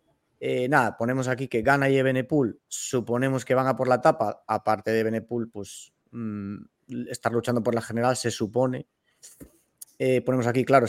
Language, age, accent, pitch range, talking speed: Spanish, 30-49, Spanish, 115-145 Hz, 170 wpm